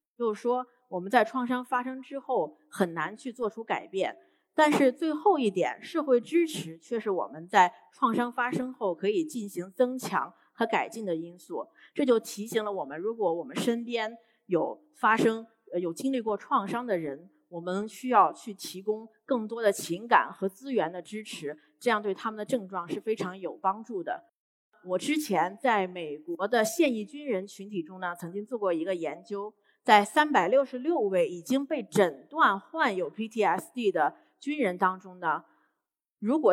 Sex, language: female, Chinese